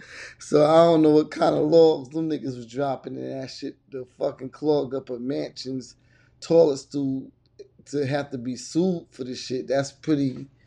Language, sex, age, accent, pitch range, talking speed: English, male, 20-39, American, 125-145 Hz, 185 wpm